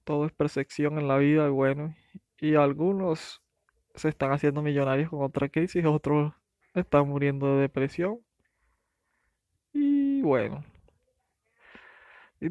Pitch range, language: 140-155 Hz, Spanish